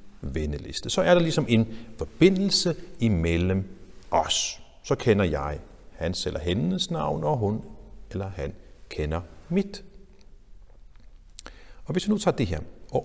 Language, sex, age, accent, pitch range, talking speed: Danish, male, 60-79, native, 80-140 Hz, 140 wpm